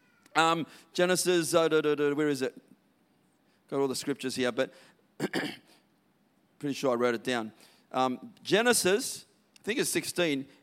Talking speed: 150 wpm